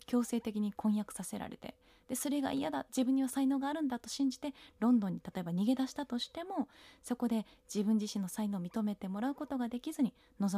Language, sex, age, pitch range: Japanese, female, 20-39, 220-275 Hz